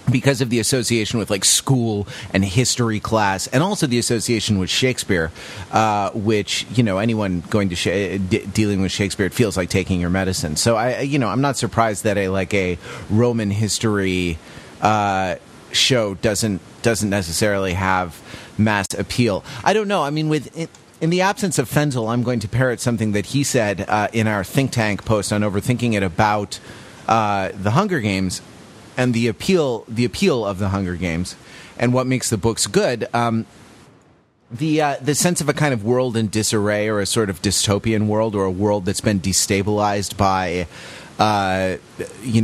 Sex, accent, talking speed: male, American, 180 wpm